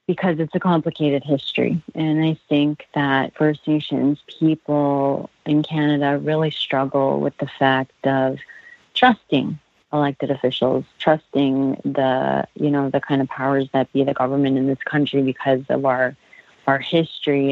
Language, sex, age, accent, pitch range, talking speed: English, female, 30-49, American, 135-155 Hz, 145 wpm